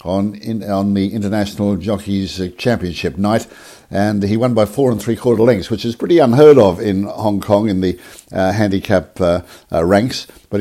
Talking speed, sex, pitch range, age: 175 wpm, male, 90-115 Hz, 60-79